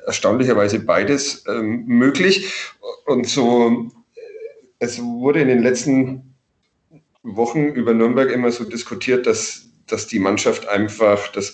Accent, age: German, 40-59